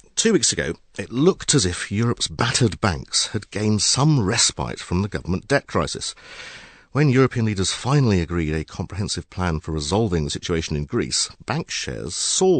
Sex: male